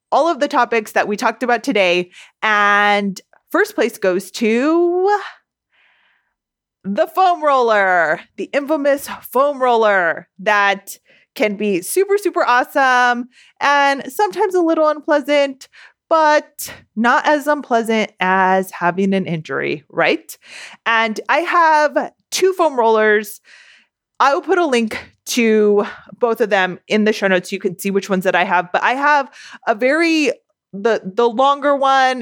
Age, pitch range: 30-49, 195-270 Hz